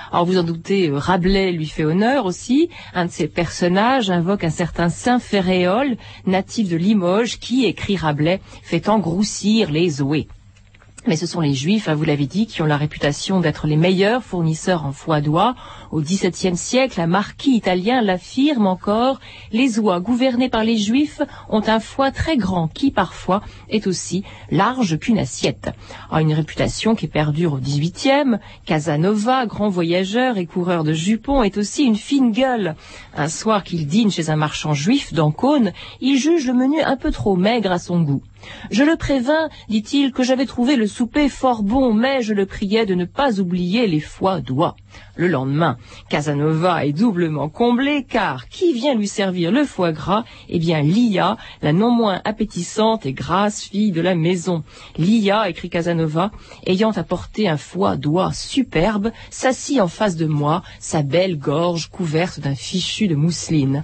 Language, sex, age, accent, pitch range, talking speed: French, female, 40-59, French, 165-230 Hz, 175 wpm